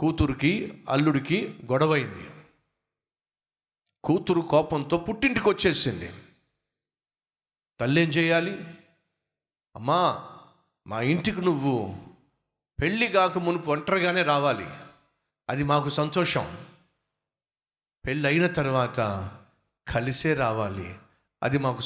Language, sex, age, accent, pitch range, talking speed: Telugu, male, 50-69, native, 125-165 Hz, 75 wpm